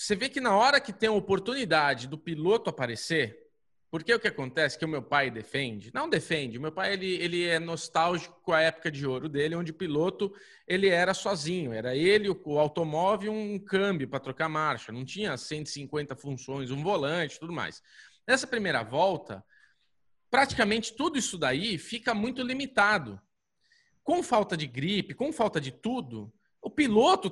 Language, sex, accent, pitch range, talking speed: Portuguese, male, Brazilian, 155-240 Hz, 175 wpm